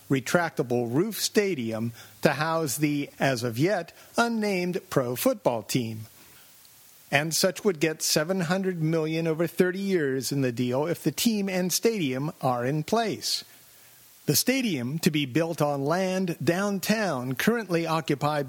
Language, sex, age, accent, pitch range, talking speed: English, male, 50-69, American, 140-190 Hz, 140 wpm